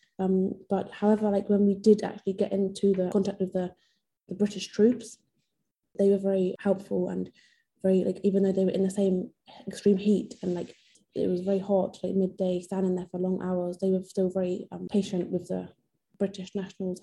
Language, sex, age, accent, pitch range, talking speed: English, female, 20-39, British, 180-200 Hz, 195 wpm